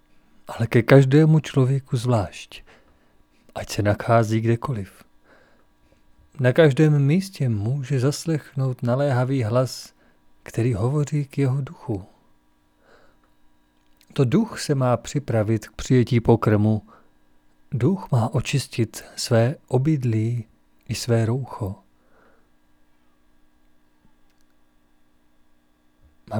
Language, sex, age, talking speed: Czech, male, 40-59, 85 wpm